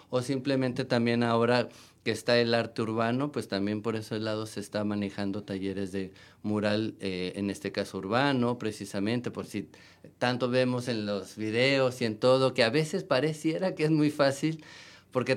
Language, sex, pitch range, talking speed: Spanish, male, 105-130 Hz, 175 wpm